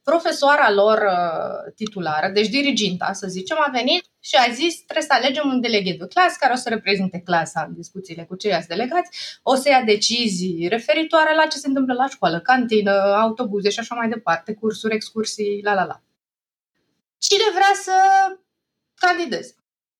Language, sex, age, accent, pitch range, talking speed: Romanian, female, 20-39, native, 220-325 Hz, 165 wpm